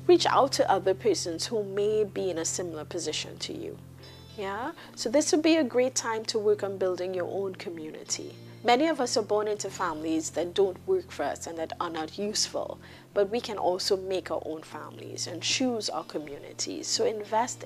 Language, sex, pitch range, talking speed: English, female, 175-240 Hz, 205 wpm